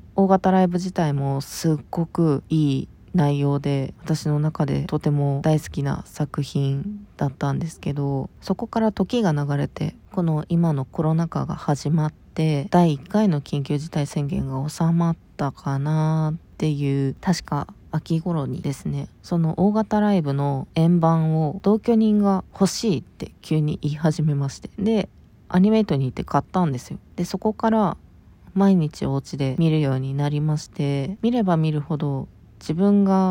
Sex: female